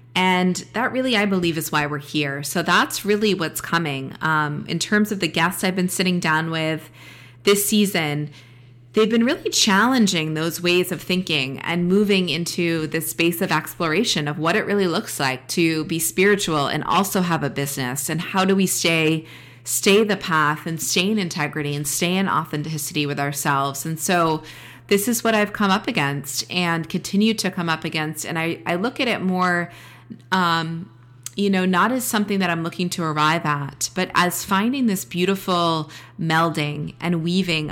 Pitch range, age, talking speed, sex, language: 155-190 Hz, 30-49, 185 wpm, female, English